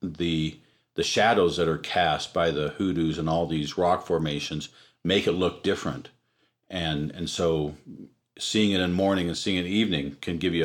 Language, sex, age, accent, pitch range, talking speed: English, male, 50-69, American, 80-95 Hz, 185 wpm